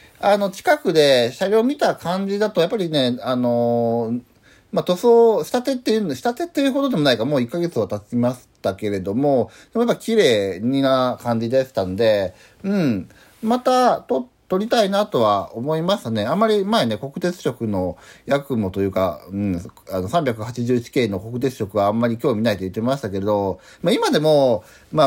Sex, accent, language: male, native, Japanese